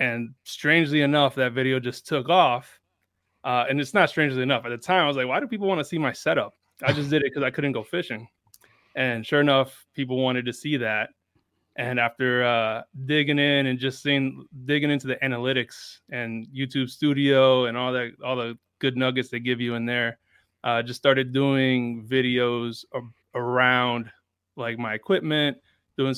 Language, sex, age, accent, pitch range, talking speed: English, male, 20-39, American, 120-140 Hz, 190 wpm